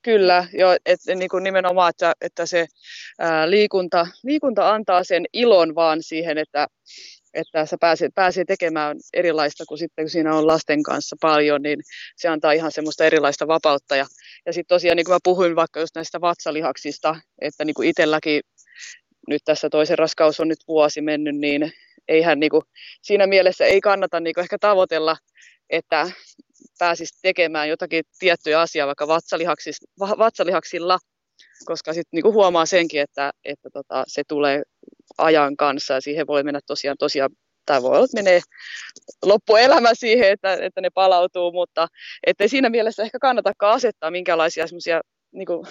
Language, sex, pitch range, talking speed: Finnish, female, 150-185 Hz, 155 wpm